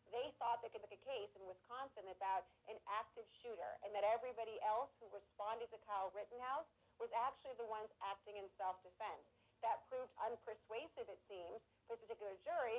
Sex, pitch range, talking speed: female, 205-260 Hz, 180 wpm